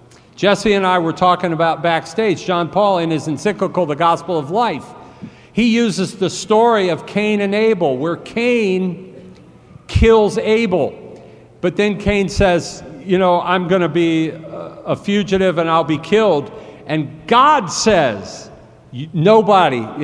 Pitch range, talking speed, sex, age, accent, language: 160-200 Hz, 145 wpm, male, 50-69, American, German